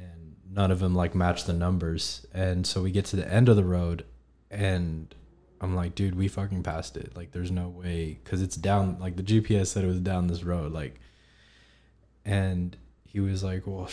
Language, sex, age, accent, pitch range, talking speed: English, male, 20-39, American, 85-95 Hz, 205 wpm